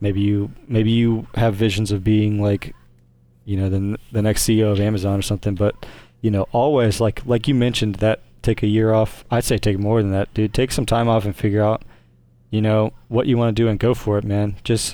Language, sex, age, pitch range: English, male, 20-39, 100-115 Hz